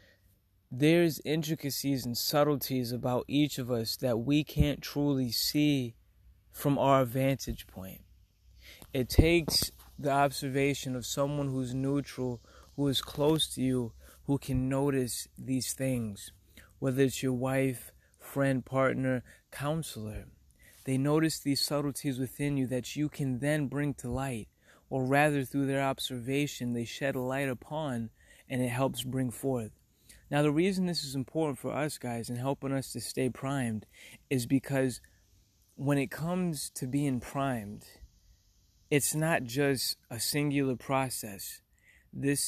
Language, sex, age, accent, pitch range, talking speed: English, male, 20-39, American, 120-140 Hz, 140 wpm